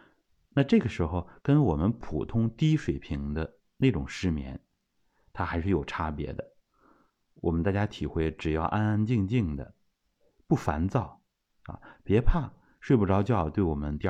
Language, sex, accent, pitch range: Chinese, male, native, 80-110 Hz